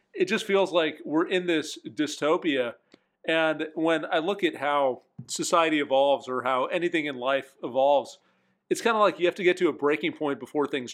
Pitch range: 130-170 Hz